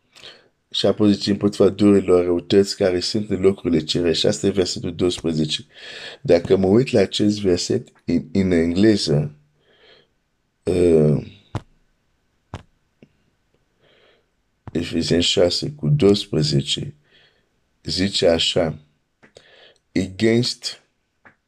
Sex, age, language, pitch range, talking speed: male, 50-69, Romanian, 85-105 Hz, 90 wpm